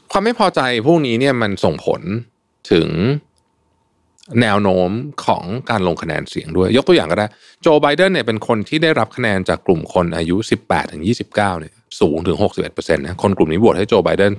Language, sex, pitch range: Thai, male, 90-135 Hz